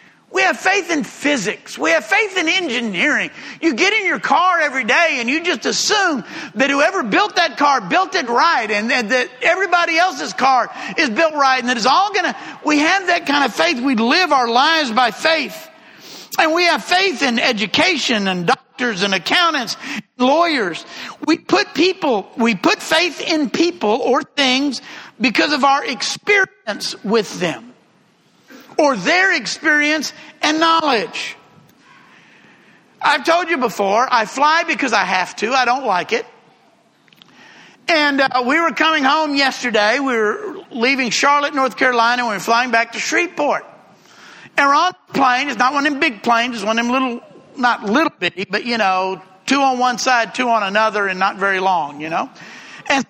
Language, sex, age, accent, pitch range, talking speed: English, male, 50-69, American, 240-325 Hz, 180 wpm